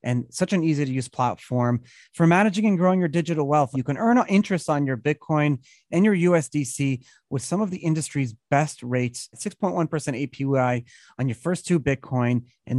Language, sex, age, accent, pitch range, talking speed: English, male, 30-49, American, 130-180 Hz, 185 wpm